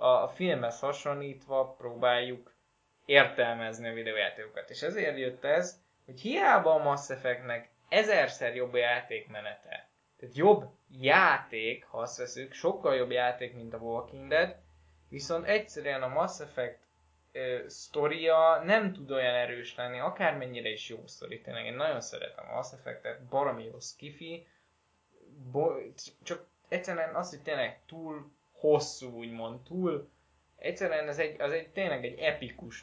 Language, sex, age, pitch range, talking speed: Hungarian, male, 20-39, 125-170 Hz, 135 wpm